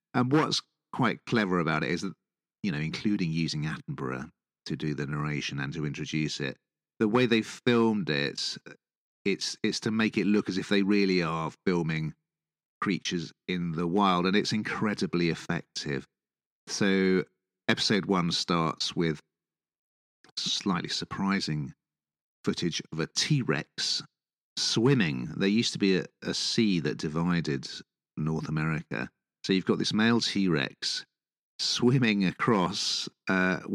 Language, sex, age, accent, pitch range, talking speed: English, male, 40-59, British, 80-110 Hz, 140 wpm